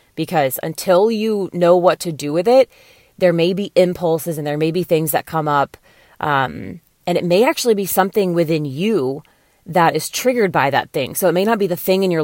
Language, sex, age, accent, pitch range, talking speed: English, female, 30-49, American, 155-195 Hz, 220 wpm